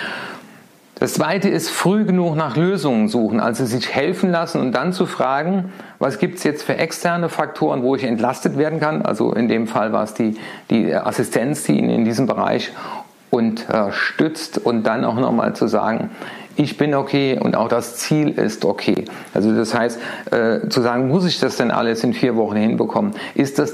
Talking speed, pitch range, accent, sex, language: 190 wpm, 120-165 Hz, German, male, German